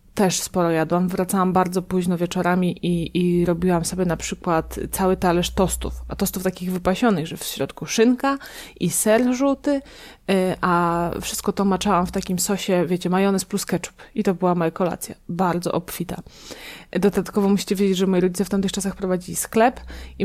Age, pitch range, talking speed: 20-39, 180-210 Hz, 170 wpm